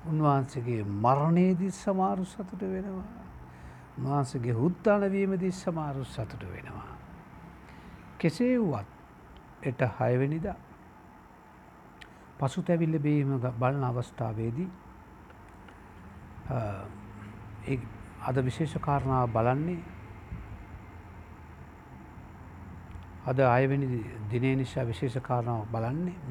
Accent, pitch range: Indian, 90-145 Hz